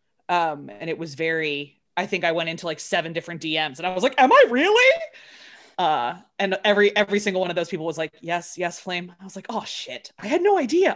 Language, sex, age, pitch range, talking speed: English, female, 20-39, 160-200 Hz, 240 wpm